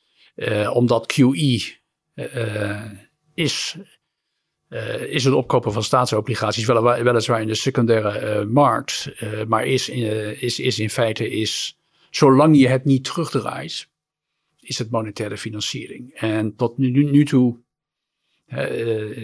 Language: Dutch